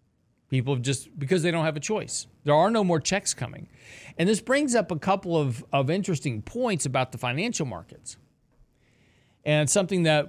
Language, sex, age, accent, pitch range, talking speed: English, male, 40-59, American, 125-170 Hz, 185 wpm